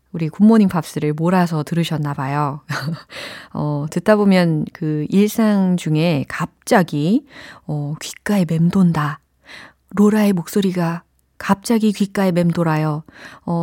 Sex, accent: female, native